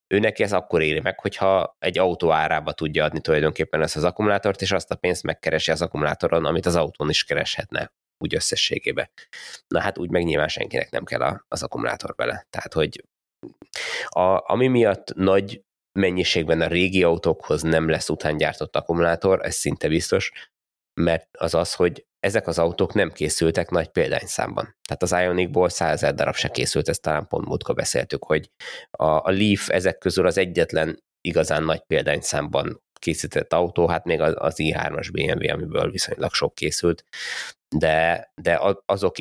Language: Hungarian